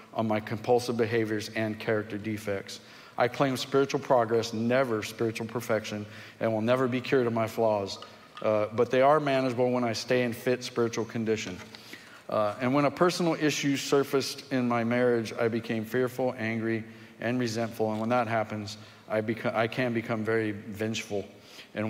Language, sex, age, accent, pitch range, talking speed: English, male, 40-59, American, 110-130 Hz, 170 wpm